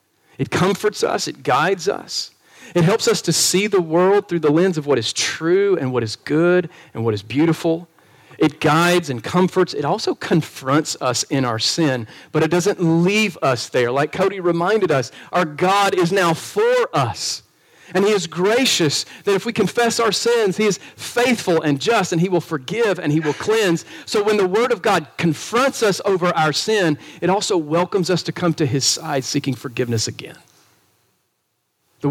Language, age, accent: English, 40-59, American